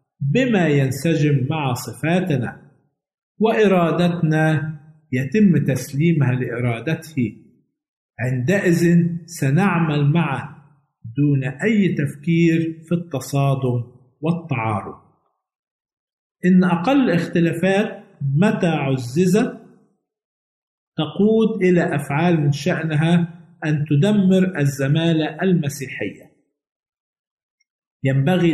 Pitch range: 135-170 Hz